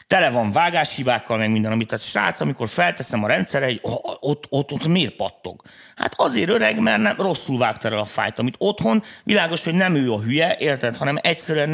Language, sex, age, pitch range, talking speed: Hungarian, male, 30-49, 110-160 Hz, 200 wpm